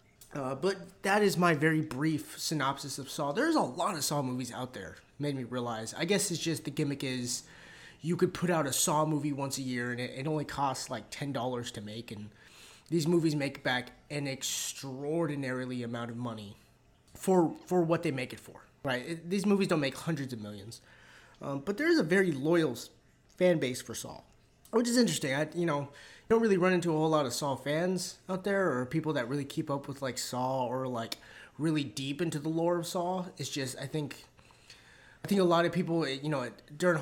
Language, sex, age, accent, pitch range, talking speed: English, male, 20-39, American, 125-165 Hz, 215 wpm